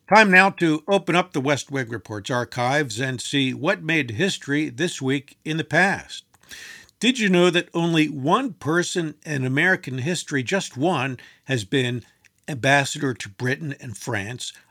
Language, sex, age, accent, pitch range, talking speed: English, male, 50-69, American, 125-170 Hz, 160 wpm